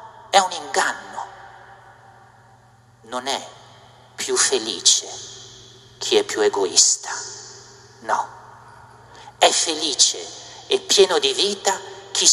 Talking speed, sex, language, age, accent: 90 wpm, male, Italian, 50-69, native